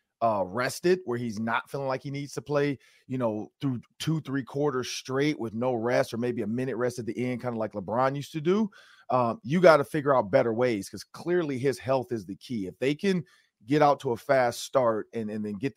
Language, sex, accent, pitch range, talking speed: English, male, American, 115-135 Hz, 245 wpm